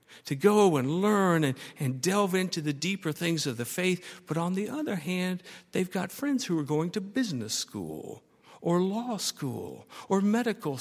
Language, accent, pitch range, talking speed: English, American, 150-220 Hz, 185 wpm